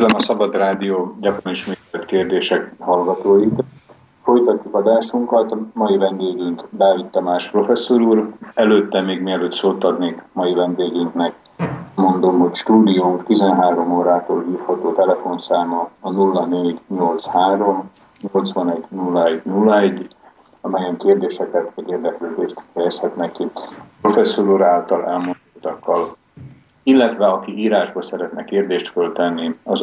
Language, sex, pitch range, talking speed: Slovak, male, 90-105 Hz, 105 wpm